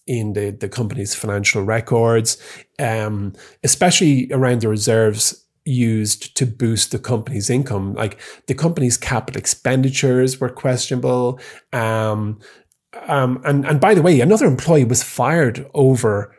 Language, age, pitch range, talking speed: English, 30-49, 105-135 Hz, 130 wpm